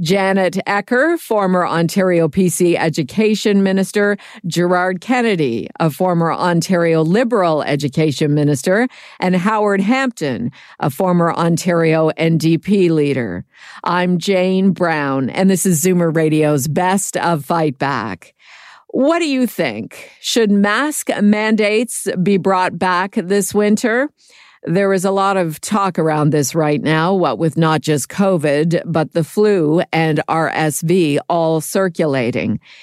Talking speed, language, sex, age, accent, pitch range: 125 wpm, English, female, 50-69, American, 155-195 Hz